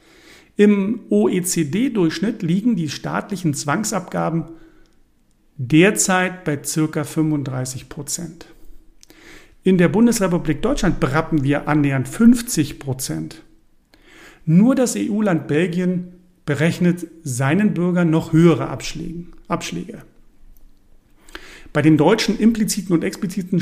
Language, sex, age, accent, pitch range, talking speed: German, male, 50-69, German, 145-180 Hz, 90 wpm